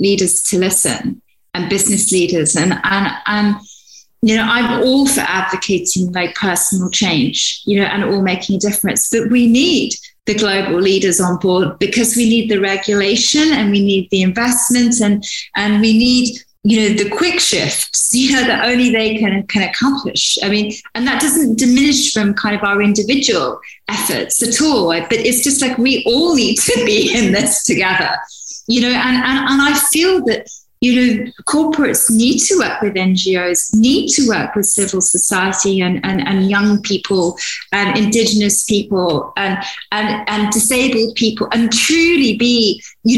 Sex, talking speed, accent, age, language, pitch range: female, 175 wpm, British, 30-49, English, 200-255 Hz